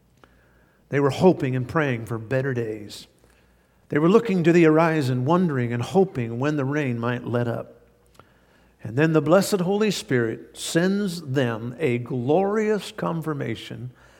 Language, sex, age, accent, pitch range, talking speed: English, male, 50-69, American, 120-170 Hz, 145 wpm